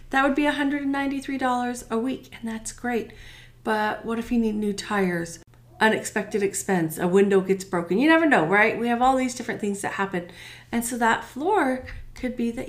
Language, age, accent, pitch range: English, 40-59, American, 175-235 Hz